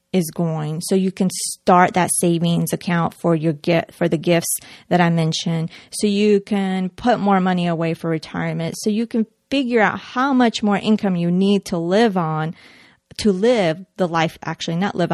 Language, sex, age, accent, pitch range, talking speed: English, female, 30-49, American, 170-205 Hz, 190 wpm